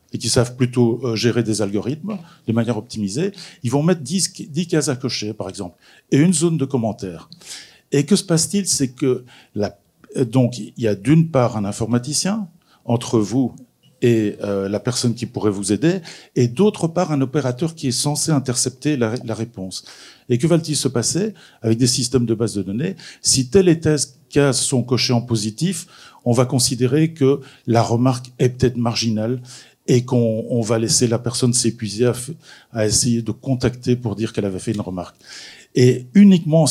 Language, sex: French, male